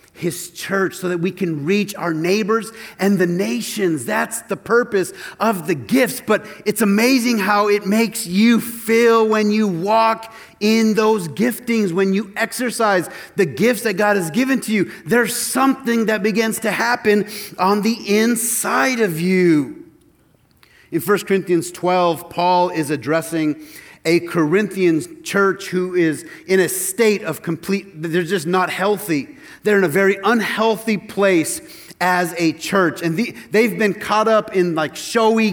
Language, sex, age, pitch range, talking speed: English, male, 30-49, 175-220 Hz, 155 wpm